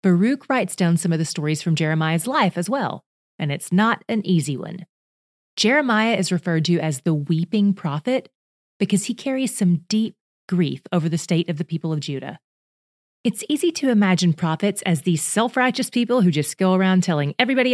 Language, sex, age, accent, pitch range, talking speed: English, female, 30-49, American, 170-225 Hz, 185 wpm